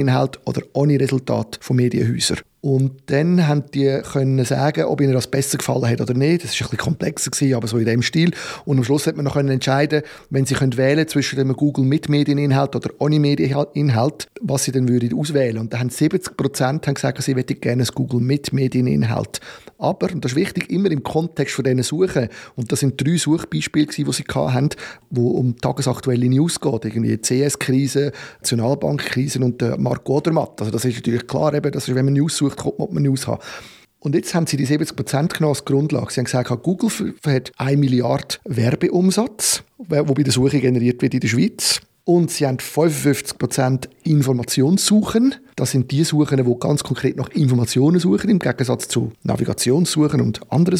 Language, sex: German, male